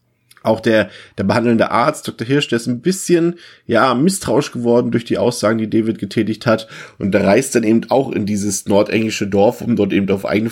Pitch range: 100-115 Hz